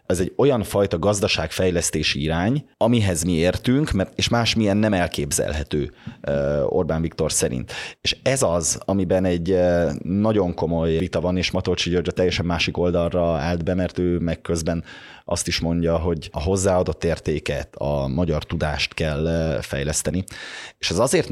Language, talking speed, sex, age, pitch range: Hungarian, 145 wpm, male, 30-49, 80-100 Hz